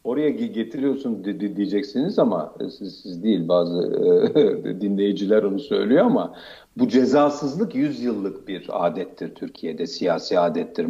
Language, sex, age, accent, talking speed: Turkish, male, 60-79, native, 110 wpm